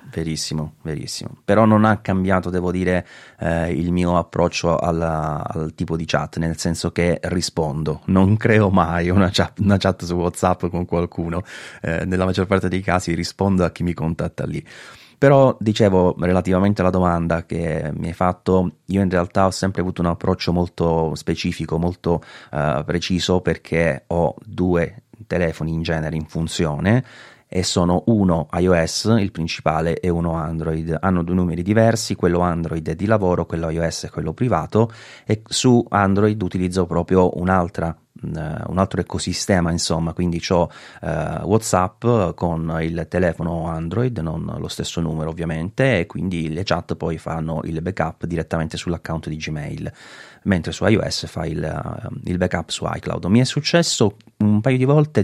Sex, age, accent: male, 30-49, native